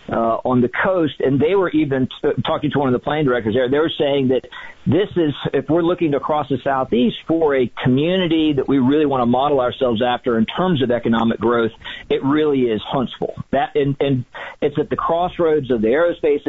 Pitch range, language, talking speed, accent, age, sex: 120-150 Hz, English, 215 wpm, American, 50-69, male